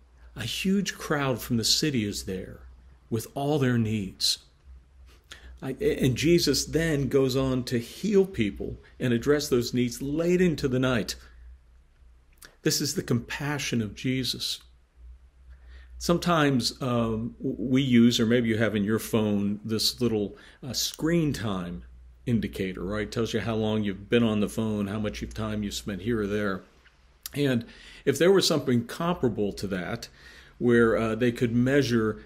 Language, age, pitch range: English, 50-69, 100-130 Hz